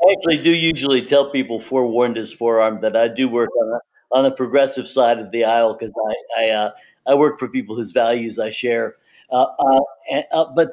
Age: 60-79